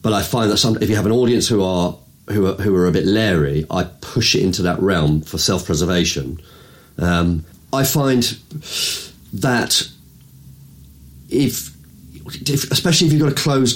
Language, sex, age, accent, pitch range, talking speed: English, male, 40-59, British, 85-105 Hz, 170 wpm